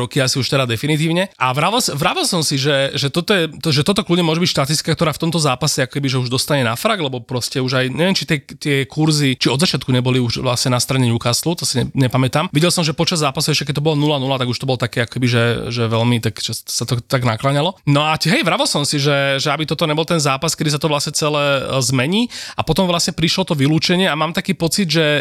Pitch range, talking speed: 130-155 Hz, 245 wpm